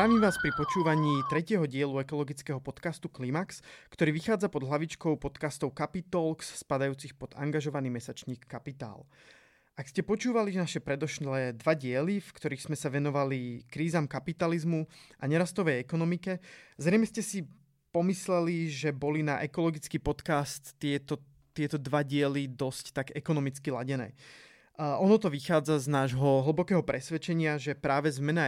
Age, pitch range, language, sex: 20-39, 140-165 Hz, Slovak, male